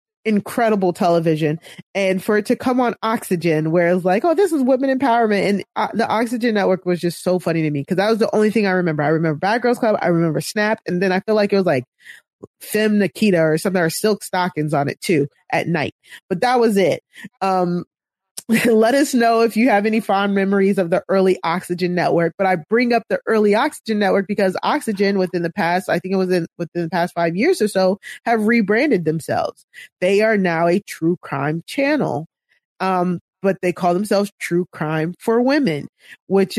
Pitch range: 165-210 Hz